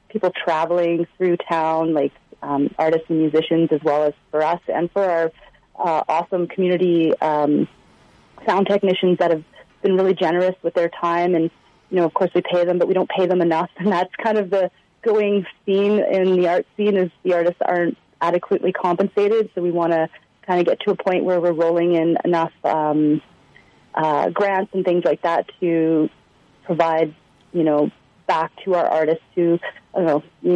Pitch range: 165-190 Hz